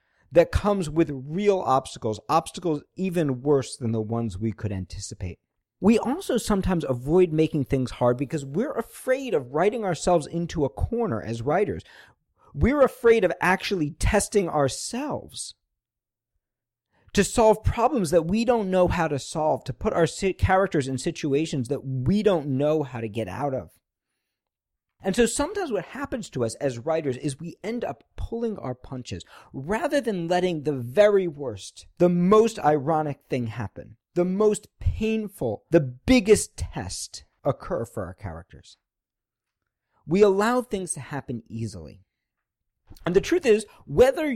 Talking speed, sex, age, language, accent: 150 wpm, male, 50-69, English, American